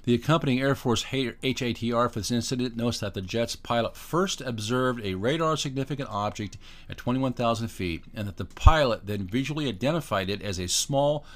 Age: 50-69